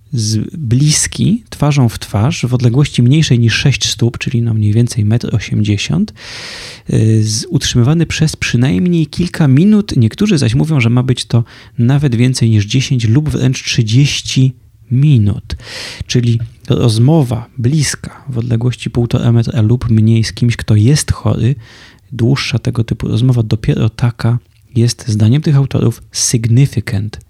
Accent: native